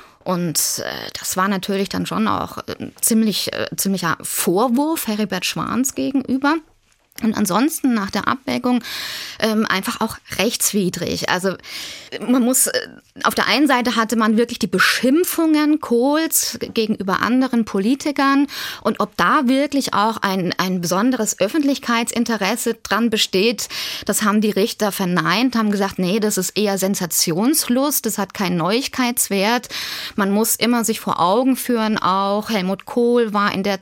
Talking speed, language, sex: 140 wpm, German, female